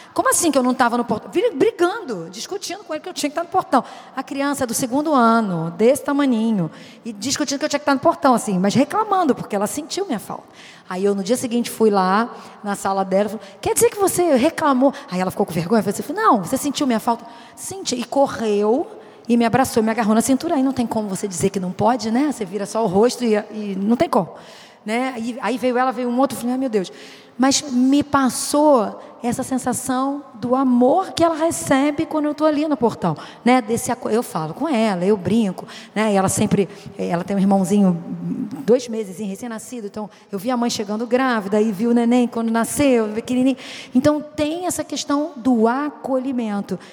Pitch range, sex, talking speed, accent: 215-270 Hz, female, 215 wpm, Brazilian